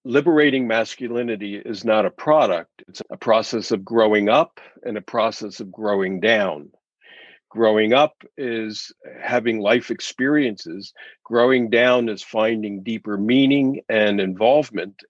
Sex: male